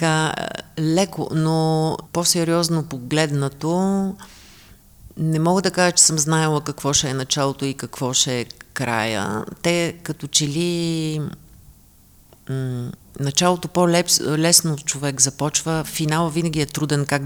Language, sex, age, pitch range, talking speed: Bulgarian, female, 40-59, 135-160 Hz, 115 wpm